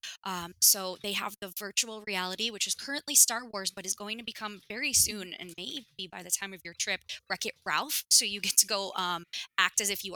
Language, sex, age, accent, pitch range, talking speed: English, female, 20-39, American, 180-205 Hz, 235 wpm